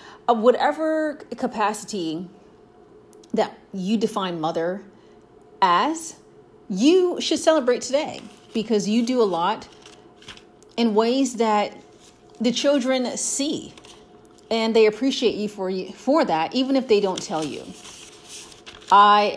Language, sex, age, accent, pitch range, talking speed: English, female, 30-49, American, 185-245 Hz, 120 wpm